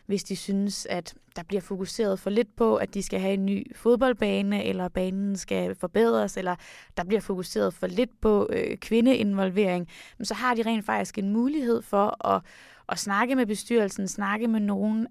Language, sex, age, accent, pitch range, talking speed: Danish, female, 20-39, native, 195-230 Hz, 180 wpm